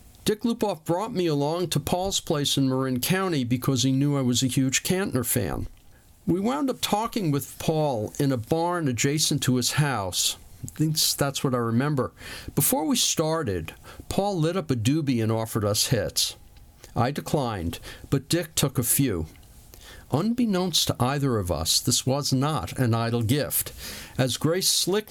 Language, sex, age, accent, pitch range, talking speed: English, male, 50-69, American, 115-150 Hz, 170 wpm